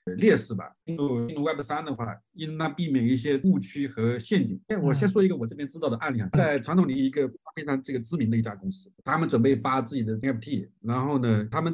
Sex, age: male, 50-69